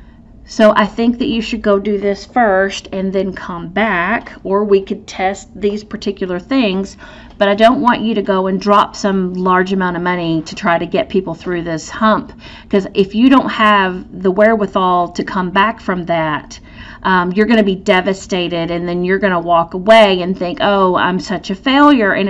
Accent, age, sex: American, 40-59, female